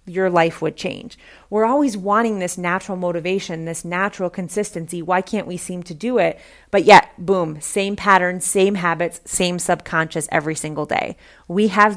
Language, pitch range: English, 175-215 Hz